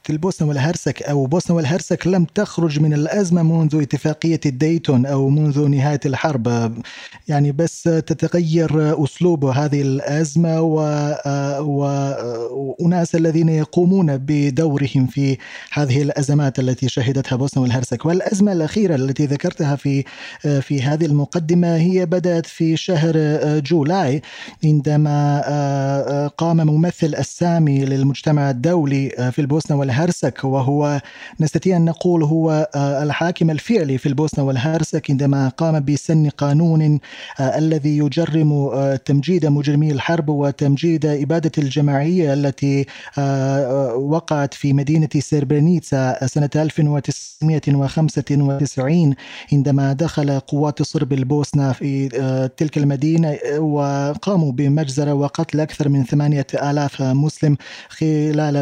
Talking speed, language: 105 wpm, Arabic